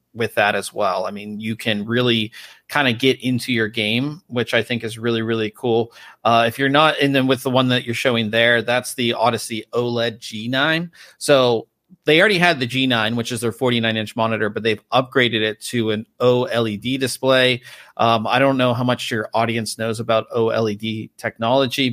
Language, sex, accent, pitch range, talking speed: English, male, American, 115-130 Hz, 210 wpm